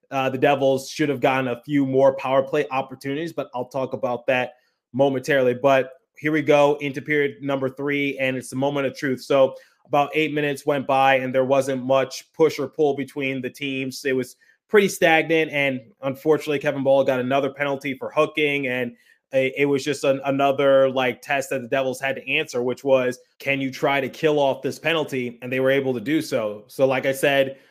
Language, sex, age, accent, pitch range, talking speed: English, male, 20-39, American, 130-145 Hz, 205 wpm